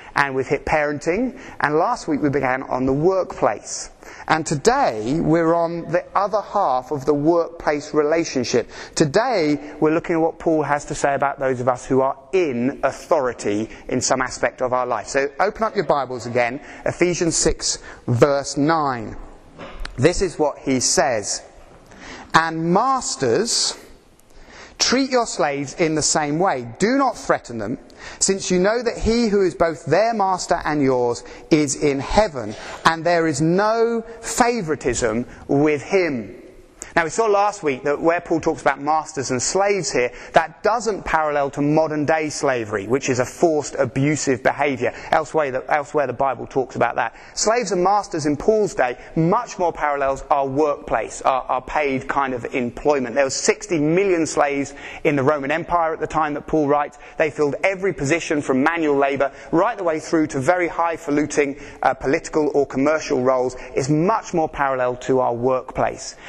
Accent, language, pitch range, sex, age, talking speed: British, English, 140-175 Hz, male, 30-49, 170 wpm